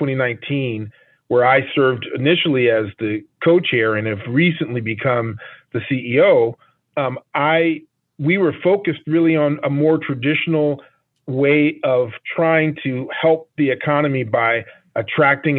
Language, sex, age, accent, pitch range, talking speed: English, male, 40-59, American, 120-155 Hz, 125 wpm